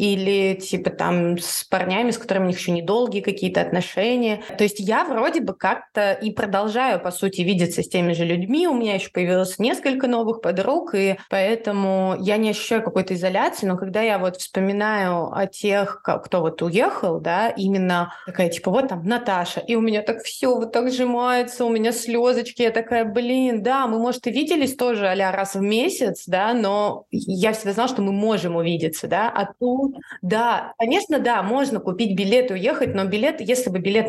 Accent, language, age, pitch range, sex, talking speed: native, Russian, 20-39, 185-235 Hz, female, 190 wpm